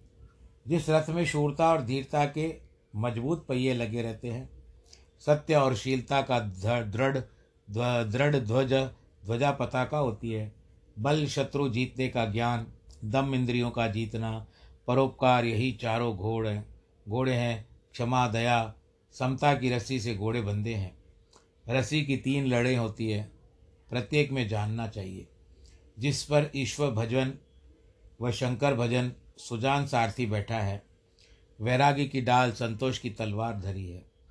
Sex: male